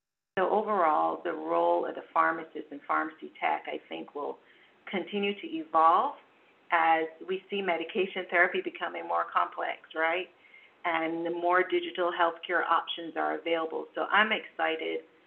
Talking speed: 140 wpm